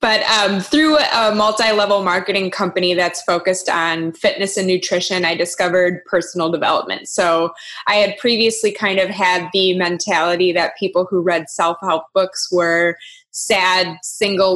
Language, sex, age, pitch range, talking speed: English, female, 20-39, 180-210 Hz, 145 wpm